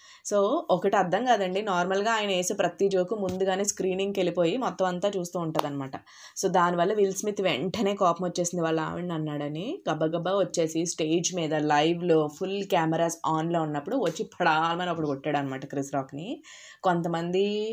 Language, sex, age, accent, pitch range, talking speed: Telugu, female, 20-39, native, 160-190 Hz, 150 wpm